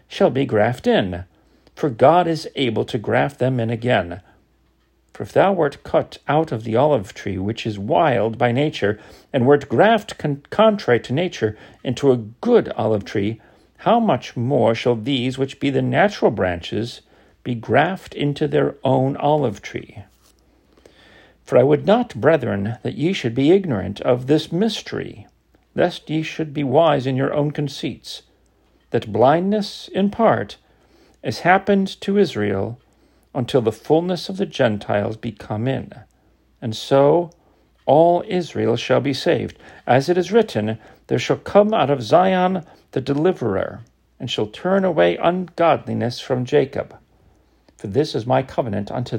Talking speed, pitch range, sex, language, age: 155 wpm, 115-170 Hz, male, English, 50-69